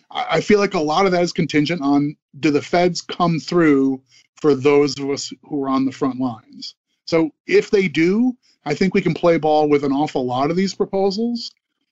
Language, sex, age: English, male, 30-49